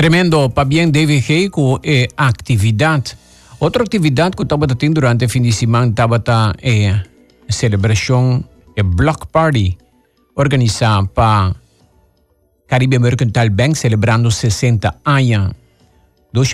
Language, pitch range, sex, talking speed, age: English, 110-145 Hz, male, 125 wpm, 50-69